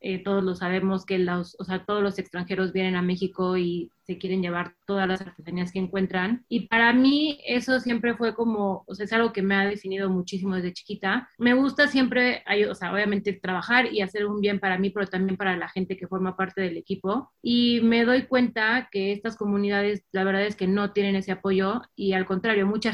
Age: 30-49